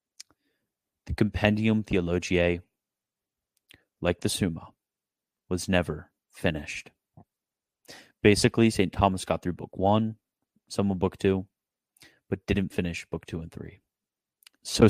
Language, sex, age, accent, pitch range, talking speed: English, male, 30-49, American, 90-105 Hz, 115 wpm